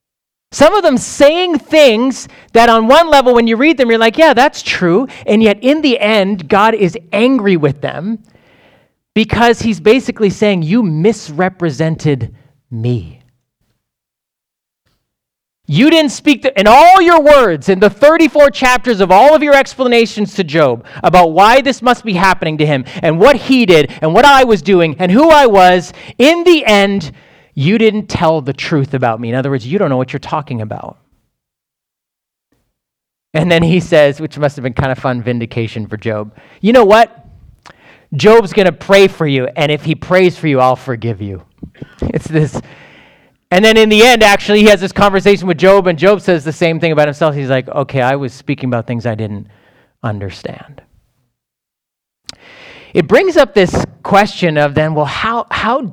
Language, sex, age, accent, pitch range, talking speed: English, male, 30-49, American, 140-230 Hz, 180 wpm